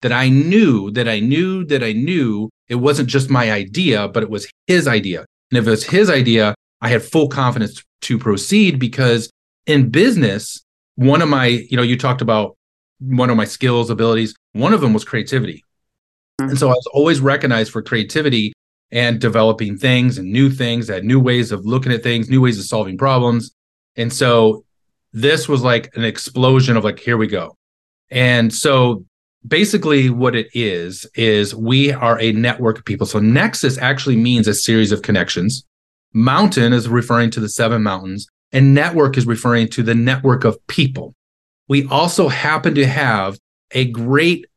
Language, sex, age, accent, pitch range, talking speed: English, male, 30-49, American, 110-135 Hz, 180 wpm